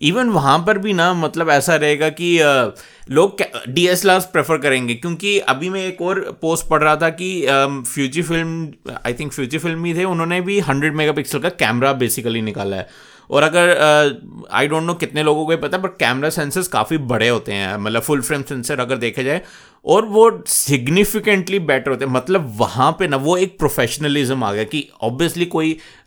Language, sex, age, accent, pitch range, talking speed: Hindi, male, 30-49, native, 125-170 Hz, 195 wpm